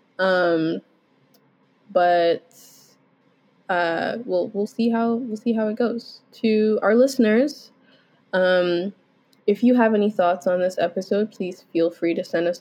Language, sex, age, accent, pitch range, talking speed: English, female, 20-39, American, 180-230 Hz, 145 wpm